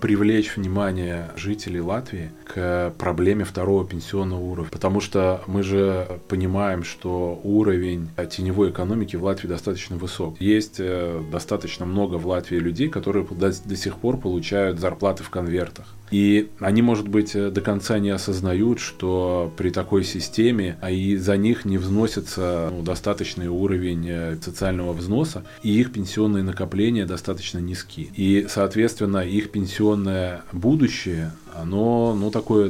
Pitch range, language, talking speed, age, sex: 90-105 Hz, Russian, 130 wpm, 20-39, male